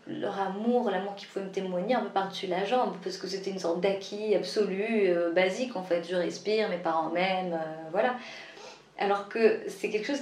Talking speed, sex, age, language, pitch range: 210 wpm, female, 30-49, French, 180-225 Hz